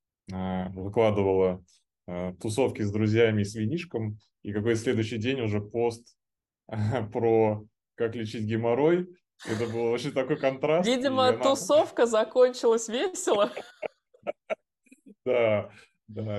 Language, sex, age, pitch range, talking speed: Russian, male, 20-39, 100-120 Hz, 95 wpm